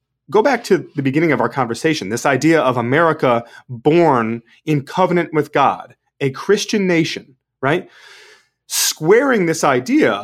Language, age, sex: English, 30-49, male